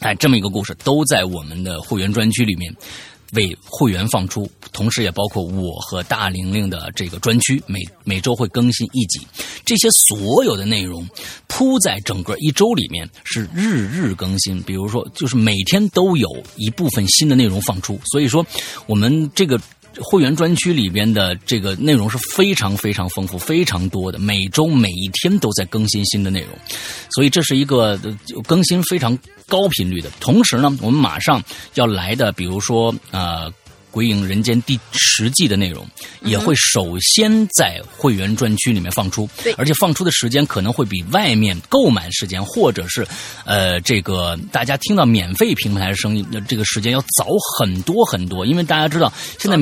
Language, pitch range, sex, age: Chinese, 95-140 Hz, male, 30-49